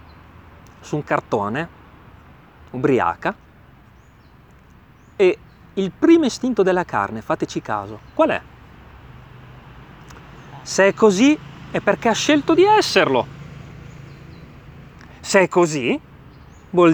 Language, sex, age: Italian, male, 30-49